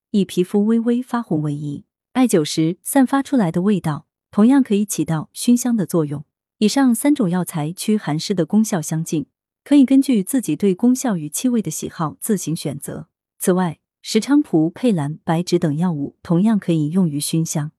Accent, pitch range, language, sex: native, 160-225 Hz, Chinese, female